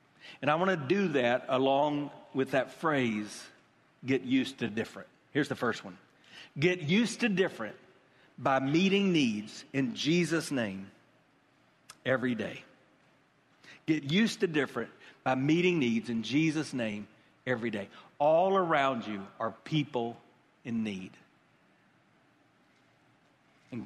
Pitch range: 140-195 Hz